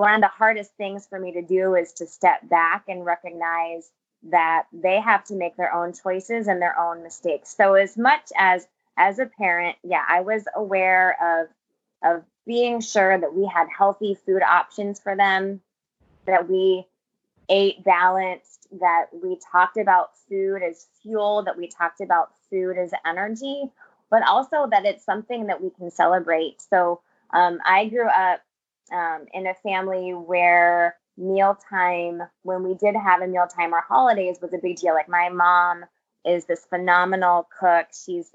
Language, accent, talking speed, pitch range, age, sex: English, American, 170 wpm, 175-200 Hz, 20-39, female